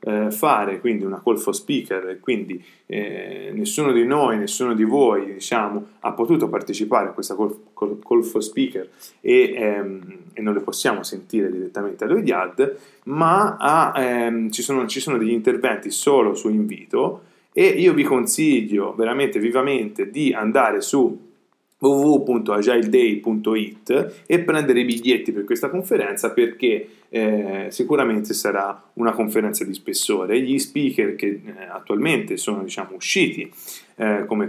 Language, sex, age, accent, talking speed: Italian, male, 20-39, native, 140 wpm